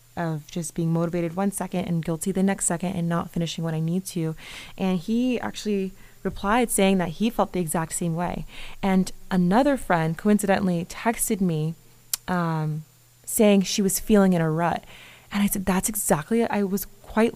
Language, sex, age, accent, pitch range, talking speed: English, female, 20-39, American, 160-195 Hz, 185 wpm